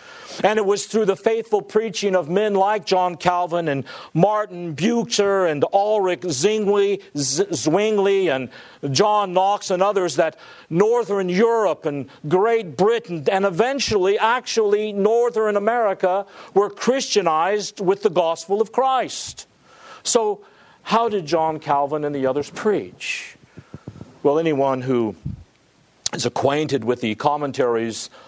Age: 50-69